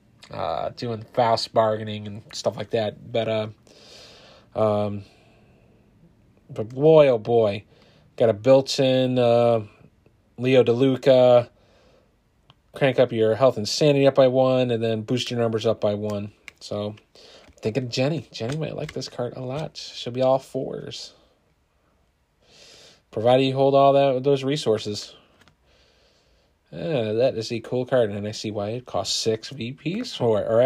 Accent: American